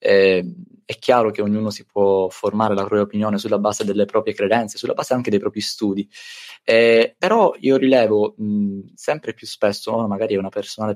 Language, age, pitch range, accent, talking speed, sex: Italian, 20-39, 105-120 Hz, native, 190 wpm, male